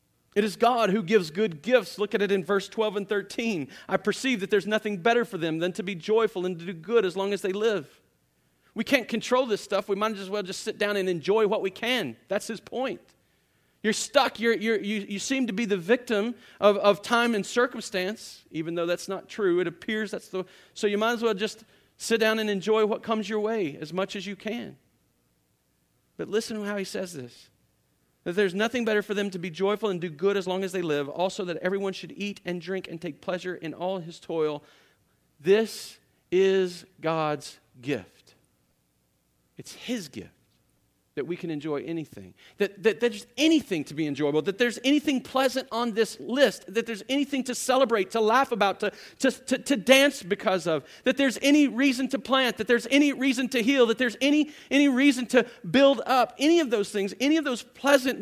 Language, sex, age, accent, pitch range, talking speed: English, male, 40-59, American, 190-245 Hz, 215 wpm